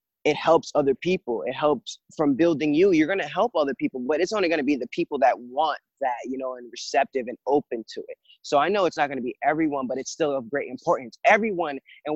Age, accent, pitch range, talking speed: 20-39, American, 135-190 Hz, 235 wpm